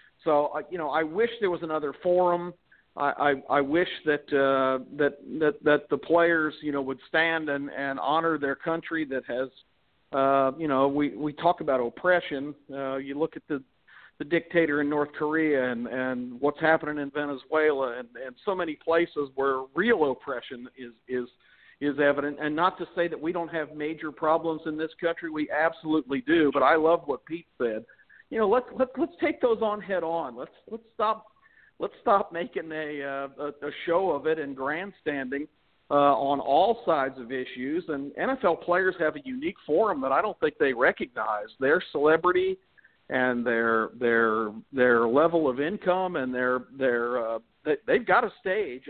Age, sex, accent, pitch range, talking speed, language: 50-69, male, American, 140-170 Hz, 180 wpm, English